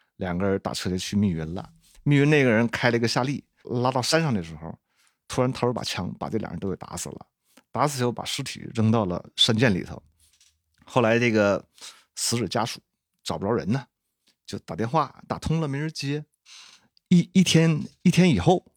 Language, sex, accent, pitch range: Chinese, male, native, 100-140 Hz